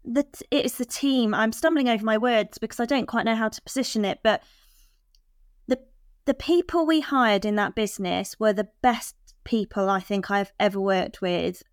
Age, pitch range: 20-39, 200-235 Hz